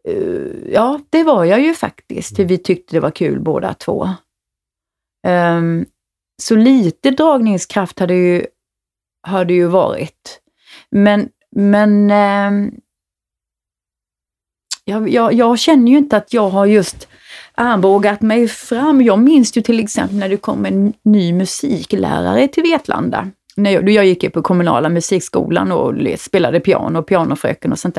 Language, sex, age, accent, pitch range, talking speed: Swedish, female, 30-49, native, 180-250 Hz, 140 wpm